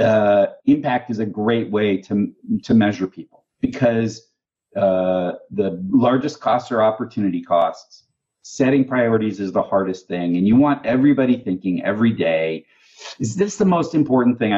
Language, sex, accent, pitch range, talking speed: English, male, American, 100-140 Hz, 150 wpm